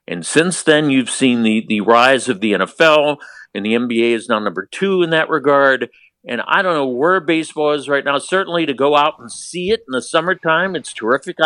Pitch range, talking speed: 130-170 Hz, 220 wpm